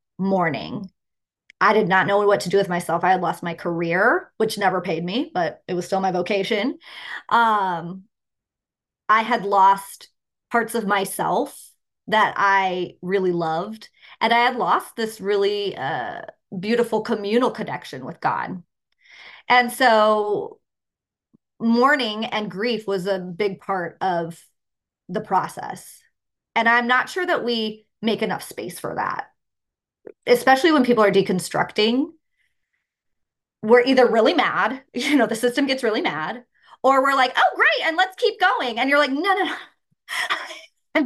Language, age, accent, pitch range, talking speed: English, 20-39, American, 200-255 Hz, 150 wpm